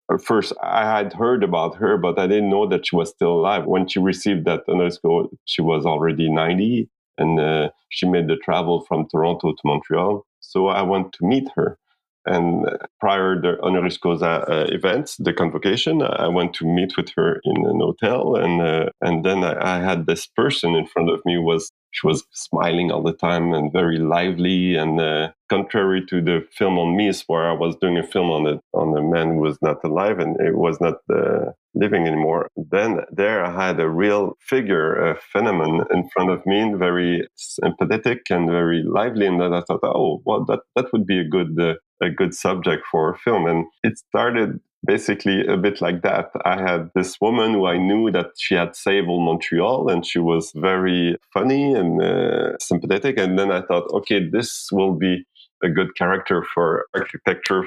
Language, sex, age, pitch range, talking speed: Polish, male, 30-49, 85-95 Hz, 200 wpm